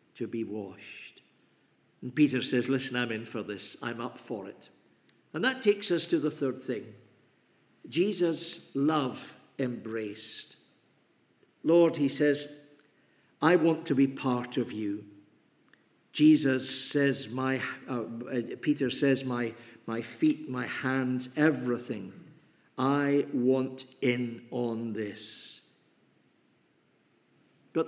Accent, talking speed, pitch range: British, 120 wpm, 125-165 Hz